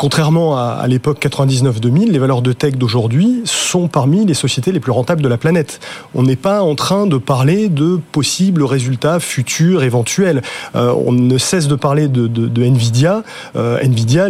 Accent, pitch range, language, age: French, 130-170 Hz, French, 30-49